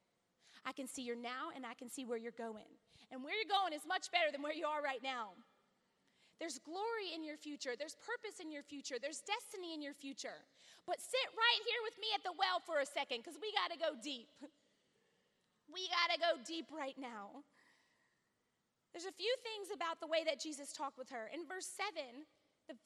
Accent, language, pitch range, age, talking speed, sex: American, English, 295-420 Hz, 30-49, 215 wpm, female